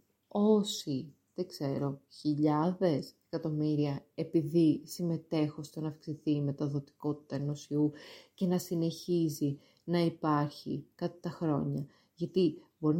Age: 30-49